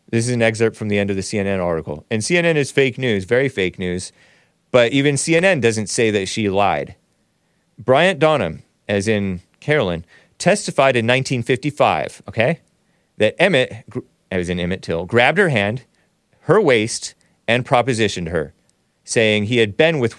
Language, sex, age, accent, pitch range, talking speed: English, male, 30-49, American, 110-175 Hz, 165 wpm